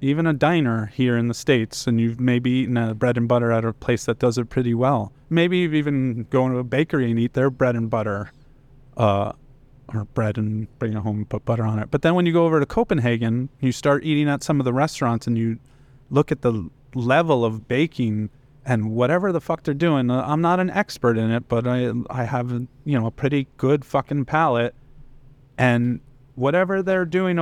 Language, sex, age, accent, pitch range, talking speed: English, male, 30-49, American, 120-150 Hz, 215 wpm